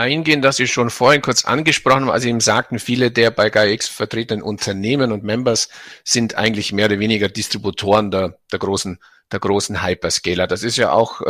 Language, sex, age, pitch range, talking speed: German, male, 50-69, 105-125 Hz, 190 wpm